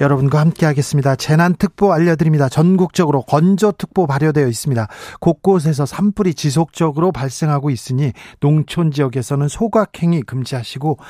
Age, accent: 40-59, native